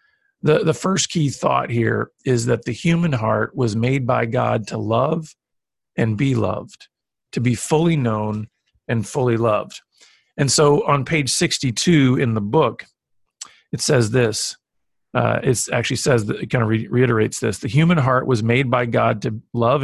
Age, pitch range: 50-69, 115-155 Hz